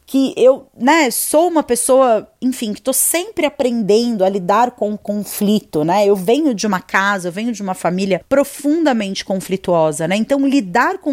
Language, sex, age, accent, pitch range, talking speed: Portuguese, female, 30-49, Brazilian, 200-285 Hz, 180 wpm